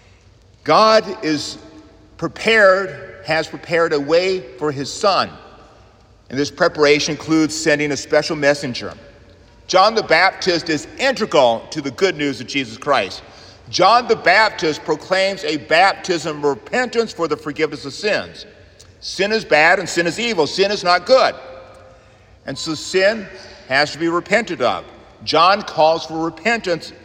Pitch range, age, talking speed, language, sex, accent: 115-185 Hz, 50-69, 145 wpm, English, male, American